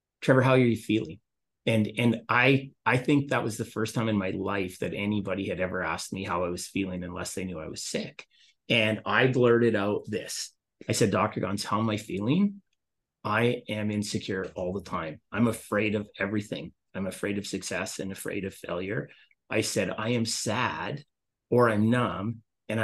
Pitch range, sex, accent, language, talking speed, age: 95-115 Hz, male, American, English, 195 wpm, 30-49